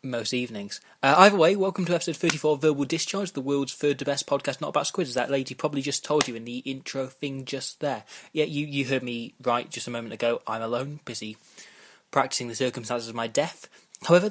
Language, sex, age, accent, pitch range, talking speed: English, male, 20-39, British, 125-155 Hz, 225 wpm